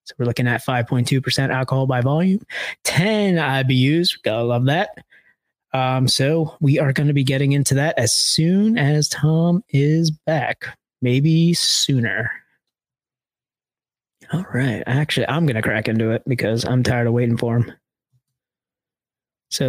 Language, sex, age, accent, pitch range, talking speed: English, male, 20-39, American, 125-160 Hz, 145 wpm